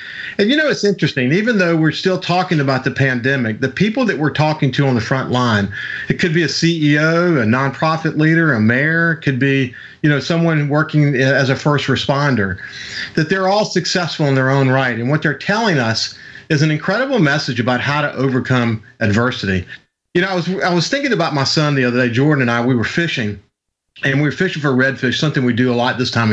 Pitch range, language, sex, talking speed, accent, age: 130-160 Hz, English, male, 215 wpm, American, 40-59